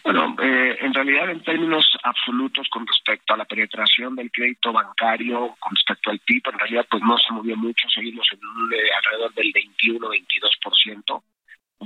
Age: 40-59